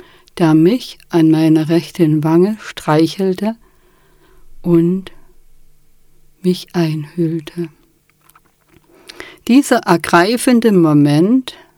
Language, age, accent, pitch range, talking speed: German, 50-69, German, 165-210 Hz, 65 wpm